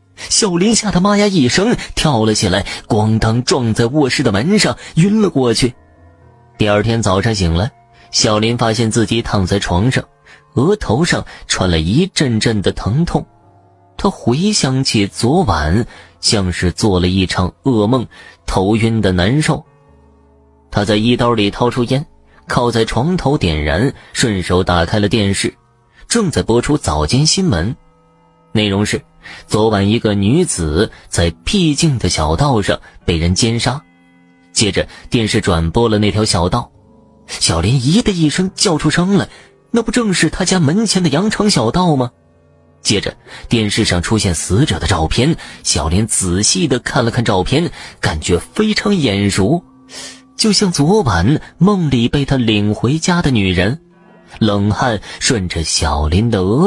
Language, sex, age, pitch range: Chinese, male, 30-49, 95-150 Hz